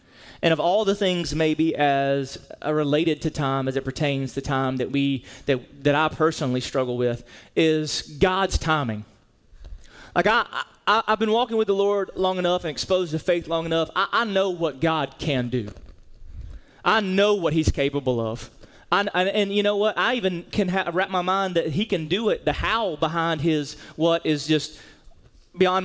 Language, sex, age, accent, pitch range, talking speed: English, male, 30-49, American, 140-195 Hz, 195 wpm